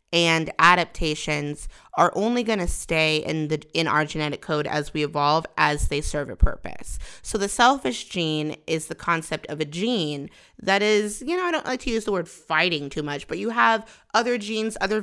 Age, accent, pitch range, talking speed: 30-49, American, 155-215 Hz, 205 wpm